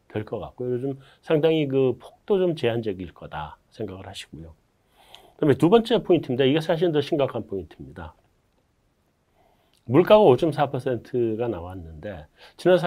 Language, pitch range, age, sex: Korean, 115-170 Hz, 40-59, male